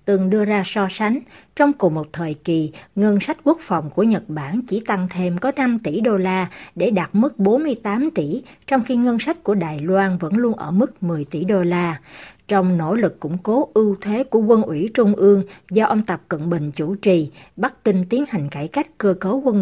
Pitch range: 175-225 Hz